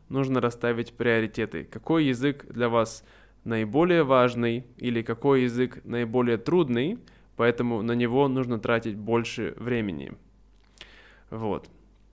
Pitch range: 120-155 Hz